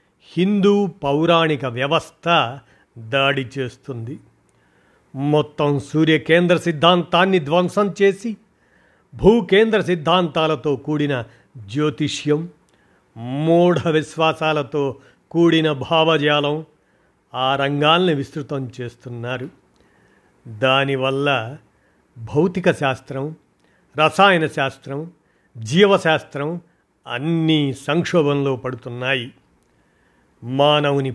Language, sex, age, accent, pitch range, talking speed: Telugu, male, 50-69, native, 140-170 Hz, 65 wpm